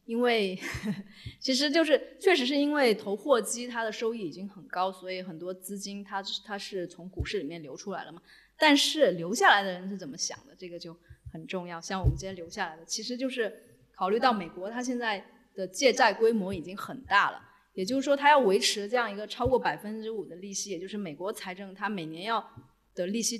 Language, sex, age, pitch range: Chinese, female, 20-39, 175-235 Hz